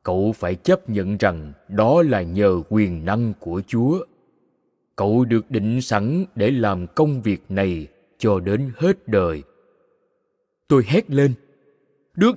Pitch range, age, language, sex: 110-180 Hz, 20-39, Vietnamese, male